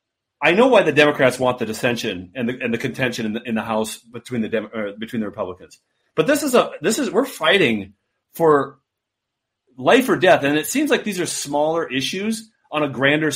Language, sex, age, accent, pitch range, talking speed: English, male, 30-49, American, 135-210 Hz, 210 wpm